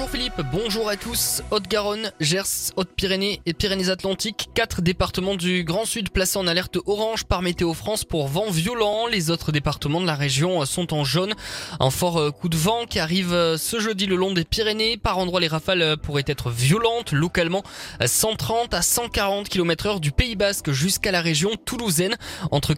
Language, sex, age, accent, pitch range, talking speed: French, male, 20-39, French, 160-205 Hz, 175 wpm